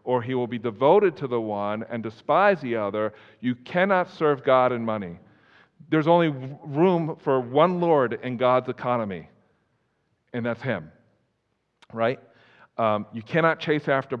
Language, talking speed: English, 150 wpm